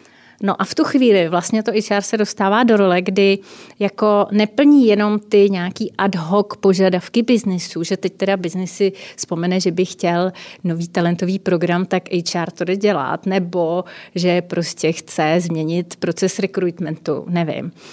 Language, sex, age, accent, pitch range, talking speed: Czech, female, 30-49, native, 190-225 Hz, 155 wpm